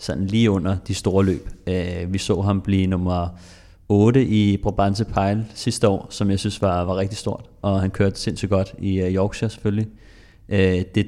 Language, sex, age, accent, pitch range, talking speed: Danish, male, 30-49, native, 95-105 Hz, 180 wpm